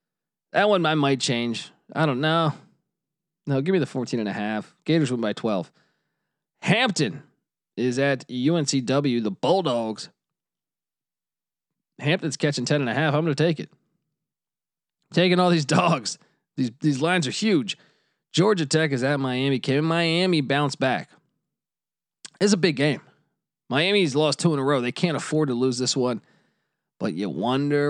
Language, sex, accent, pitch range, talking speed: English, male, American, 125-165 Hz, 160 wpm